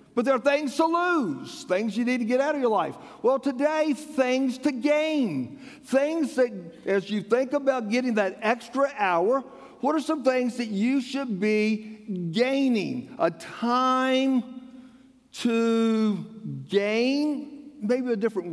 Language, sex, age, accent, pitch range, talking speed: English, male, 50-69, American, 195-270 Hz, 150 wpm